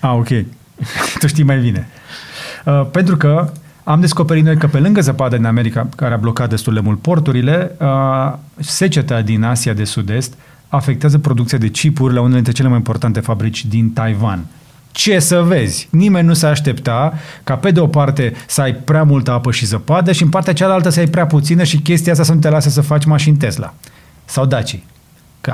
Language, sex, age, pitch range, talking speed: Romanian, male, 30-49, 120-155 Hz, 200 wpm